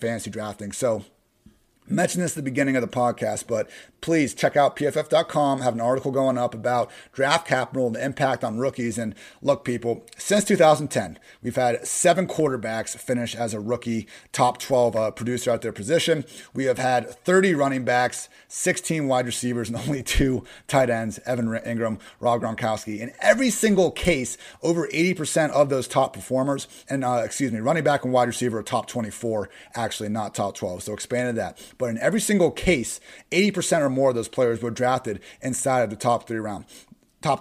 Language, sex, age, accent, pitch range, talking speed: English, male, 30-49, American, 120-150 Hz, 190 wpm